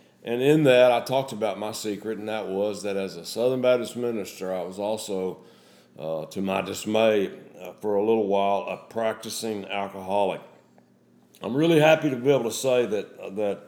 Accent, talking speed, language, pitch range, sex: American, 195 wpm, English, 105-130 Hz, male